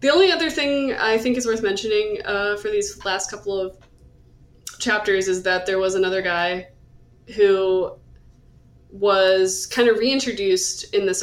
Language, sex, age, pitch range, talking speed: English, female, 20-39, 190-300 Hz, 155 wpm